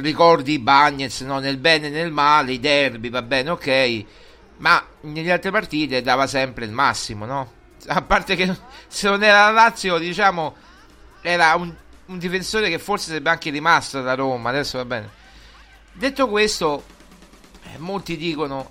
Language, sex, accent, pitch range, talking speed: Italian, male, native, 130-175 Hz, 155 wpm